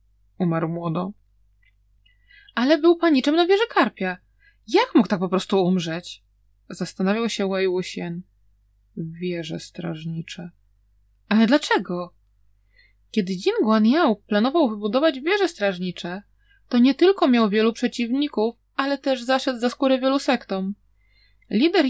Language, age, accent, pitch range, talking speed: Polish, 20-39, native, 185-270 Hz, 120 wpm